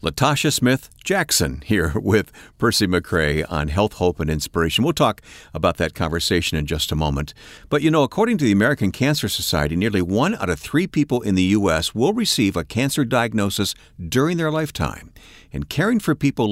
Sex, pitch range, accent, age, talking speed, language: male, 90-135 Hz, American, 50-69, 180 wpm, English